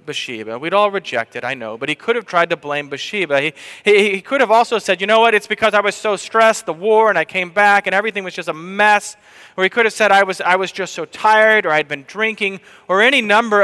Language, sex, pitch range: English, male, 155-205 Hz